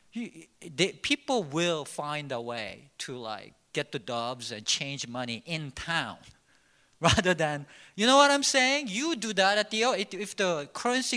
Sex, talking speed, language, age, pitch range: male, 160 wpm, English, 50-69, 150-235 Hz